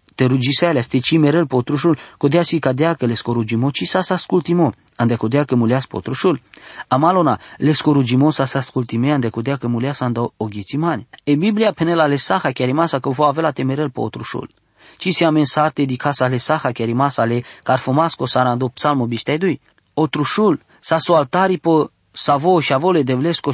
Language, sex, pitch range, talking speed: English, male, 125-160 Hz, 175 wpm